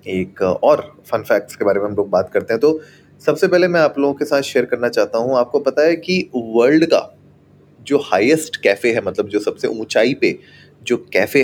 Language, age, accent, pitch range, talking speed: Hindi, 30-49, native, 105-155 Hz, 215 wpm